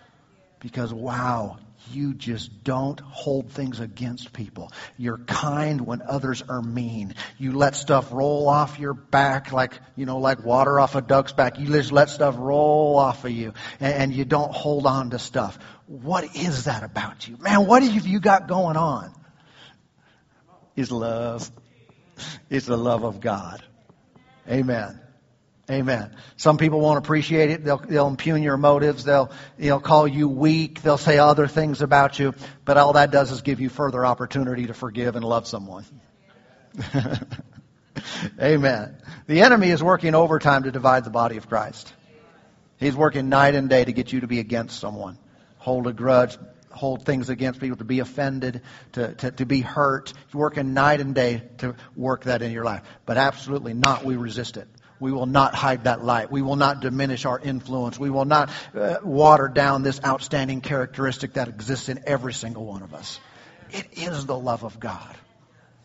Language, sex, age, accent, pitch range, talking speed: English, male, 50-69, American, 125-145 Hz, 175 wpm